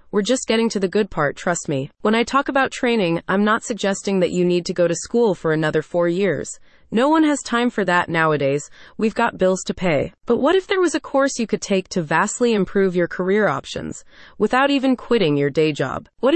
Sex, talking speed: female, 230 wpm